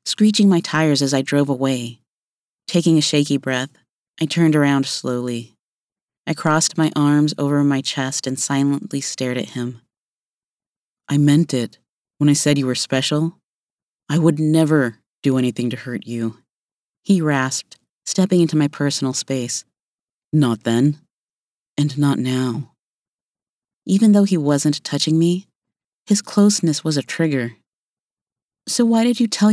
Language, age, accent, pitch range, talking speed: English, 30-49, American, 135-170 Hz, 145 wpm